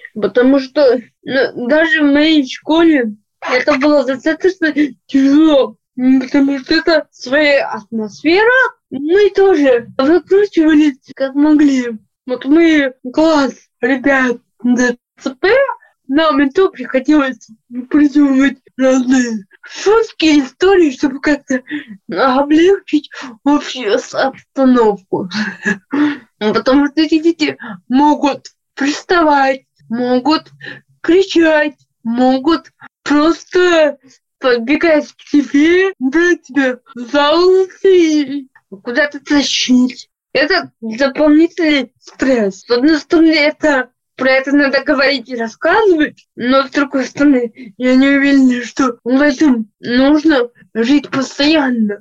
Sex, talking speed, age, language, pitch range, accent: female, 95 wpm, 20-39, Russian, 250-305 Hz, native